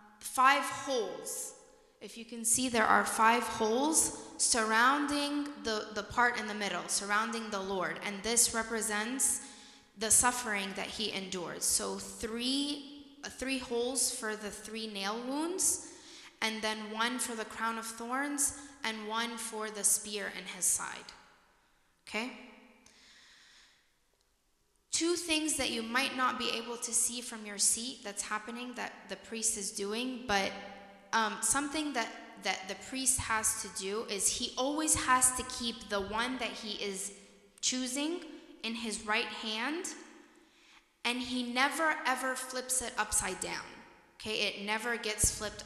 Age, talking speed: 10-29, 150 wpm